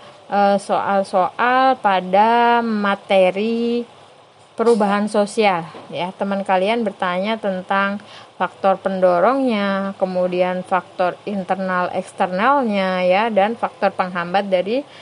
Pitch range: 185-230 Hz